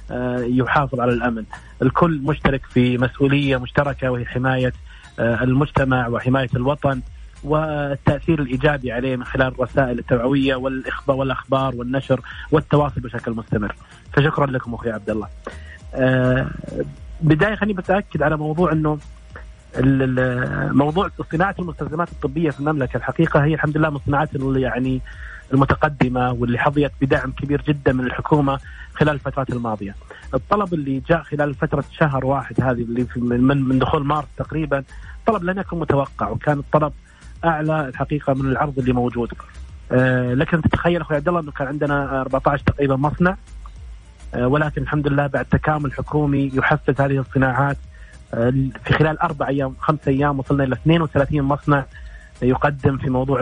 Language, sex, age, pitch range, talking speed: Arabic, male, 30-49, 125-150 Hz, 135 wpm